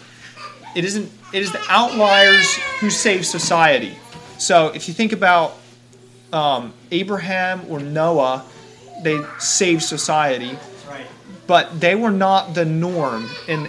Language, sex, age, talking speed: English, male, 30-49, 125 wpm